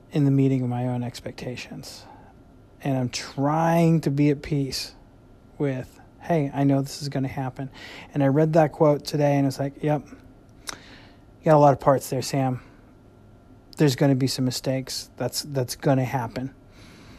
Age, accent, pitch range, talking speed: 30-49, American, 125-145 Hz, 170 wpm